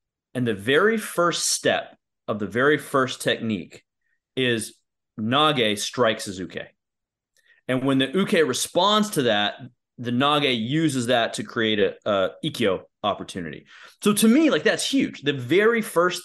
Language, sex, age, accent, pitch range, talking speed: English, male, 30-49, American, 110-155 Hz, 150 wpm